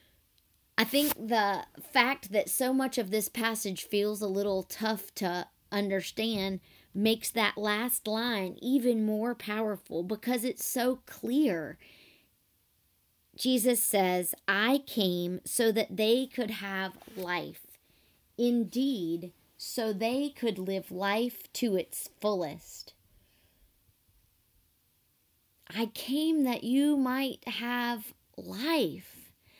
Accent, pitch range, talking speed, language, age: American, 180-230 Hz, 105 wpm, English, 40-59